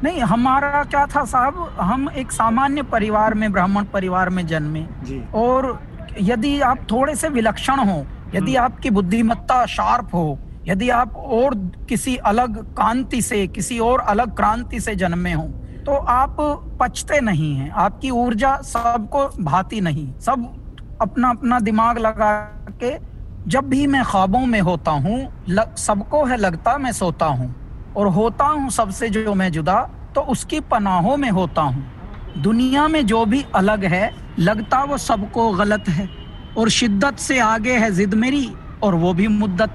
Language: Hindi